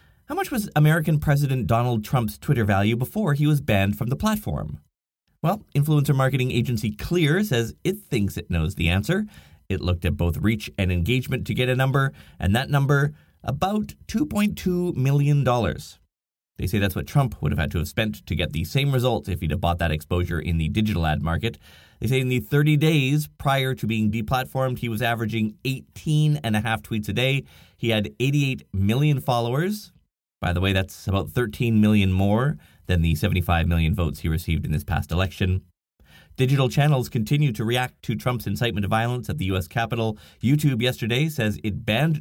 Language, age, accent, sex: English, 30-49, American, male